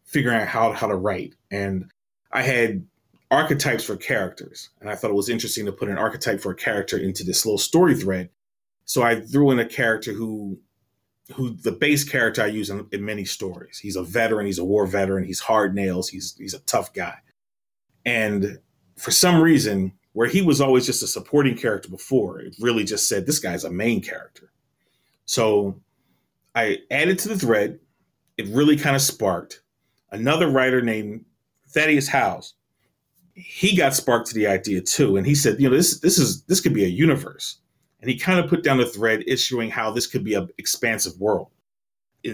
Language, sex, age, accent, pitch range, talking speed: English, male, 30-49, American, 105-145 Hz, 195 wpm